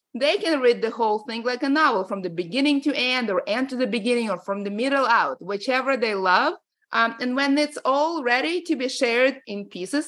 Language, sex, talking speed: English, female, 225 wpm